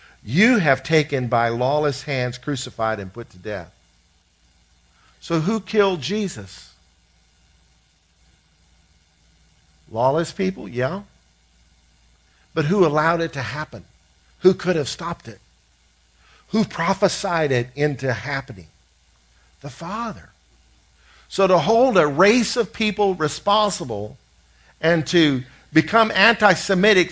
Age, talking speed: 50-69, 105 wpm